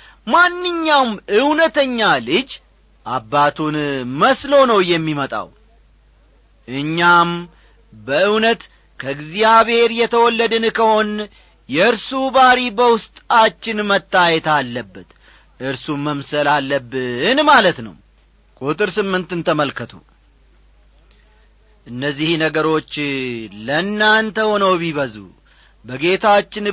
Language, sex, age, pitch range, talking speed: Amharic, male, 40-59, 145-225 Hz, 65 wpm